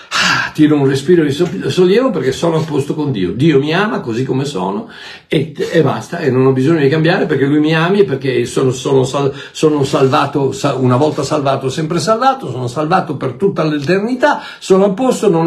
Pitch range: 135-200 Hz